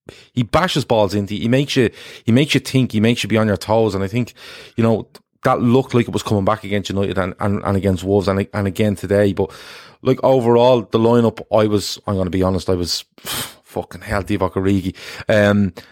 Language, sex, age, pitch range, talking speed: English, male, 30-49, 95-120 Hz, 225 wpm